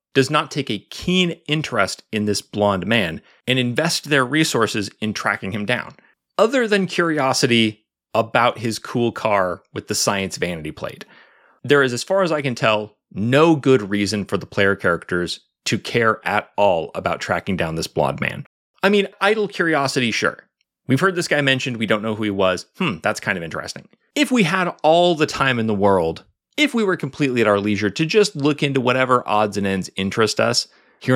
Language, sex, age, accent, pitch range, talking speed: English, male, 30-49, American, 105-155 Hz, 200 wpm